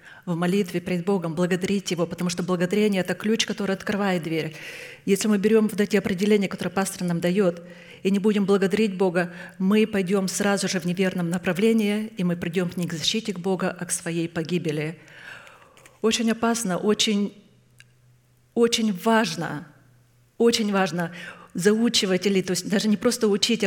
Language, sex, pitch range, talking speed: Russian, female, 175-205 Hz, 160 wpm